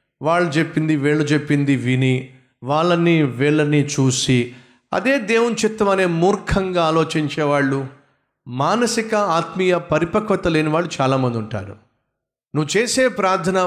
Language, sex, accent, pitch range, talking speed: Telugu, male, native, 135-190 Hz, 105 wpm